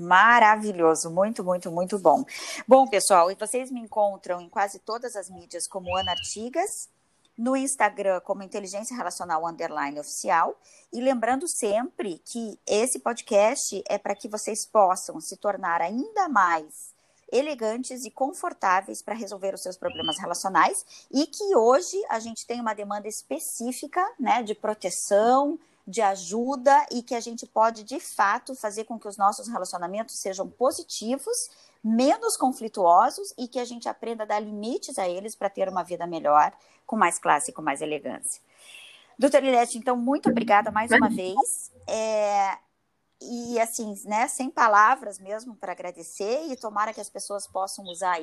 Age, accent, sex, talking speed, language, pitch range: 20-39, Brazilian, female, 155 wpm, Portuguese, 195-255 Hz